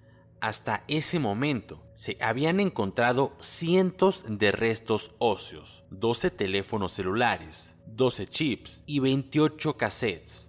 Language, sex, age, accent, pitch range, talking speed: Spanish, male, 30-49, Mexican, 105-140 Hz, 105 wpm